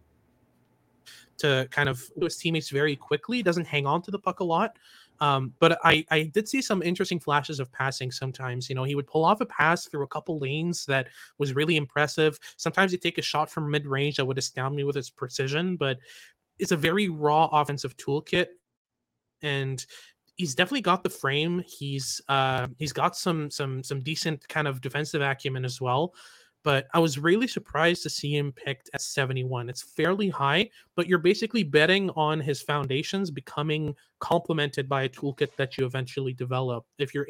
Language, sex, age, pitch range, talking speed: English, male, 20-39, 135-165 Hz, 190 wpm